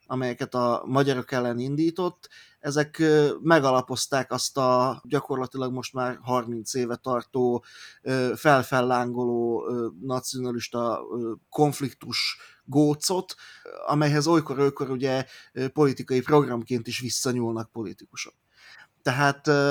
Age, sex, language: 30-49, male, Hungarian